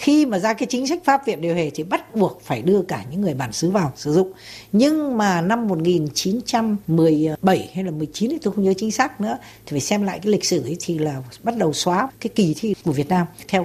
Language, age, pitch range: Vietnamese, 60-79, 170-225 Hz